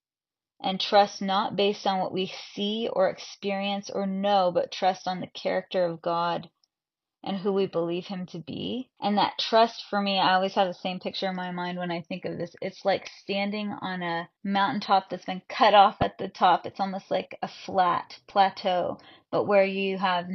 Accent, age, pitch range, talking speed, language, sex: American, 20-39, 180-205 Hz, 200 wpm, English, female